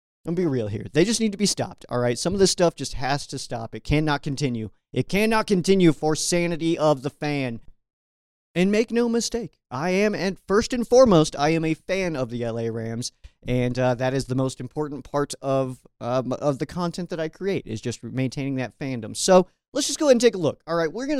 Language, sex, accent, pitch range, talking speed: English, male, American, 130-175 Hz, 240 wpm